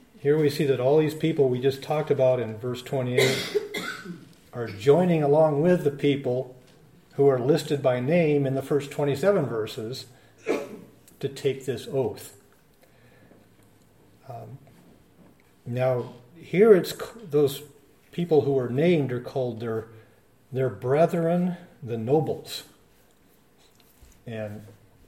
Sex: male